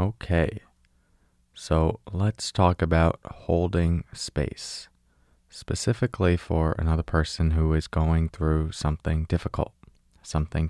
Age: 30-49